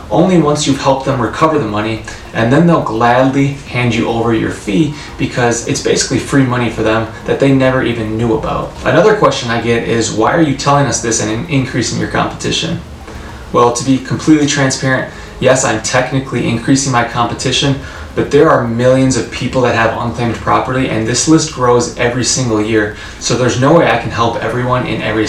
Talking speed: 195 wpm